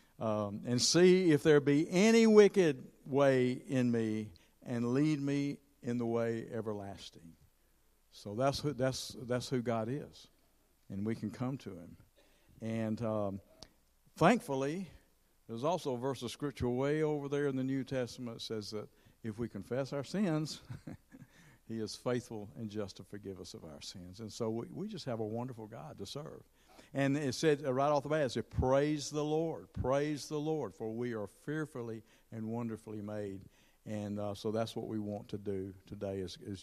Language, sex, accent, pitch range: English, male, American, 105-135 Hz